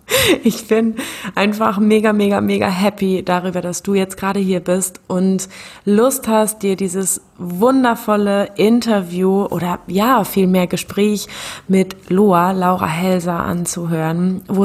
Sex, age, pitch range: female, 20-39, 175-205 Hz